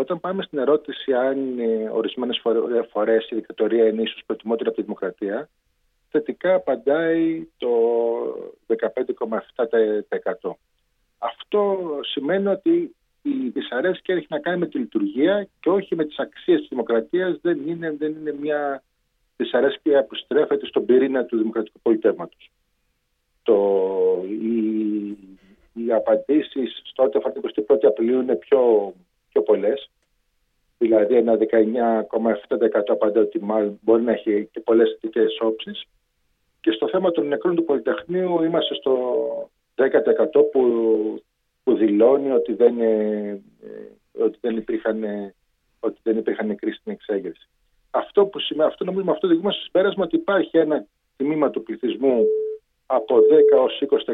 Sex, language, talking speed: male, Greek, 125 wpm